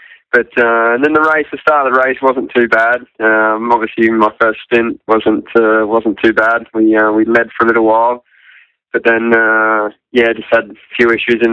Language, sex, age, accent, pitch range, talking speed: English, male, 20-39, Australian, 110-120 Hz, 220 wpm